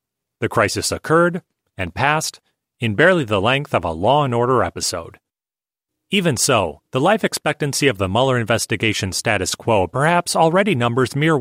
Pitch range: 110-150 Hz